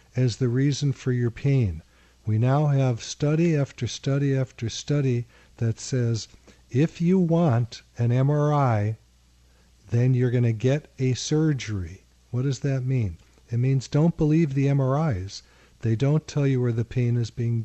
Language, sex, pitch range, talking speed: English, male, 110-140 Hz, 160 wpm